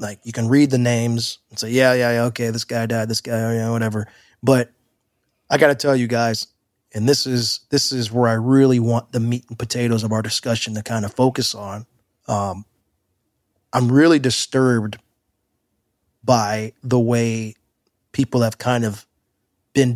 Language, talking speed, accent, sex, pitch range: English, 180 wpm, American, male, 115-130 Hz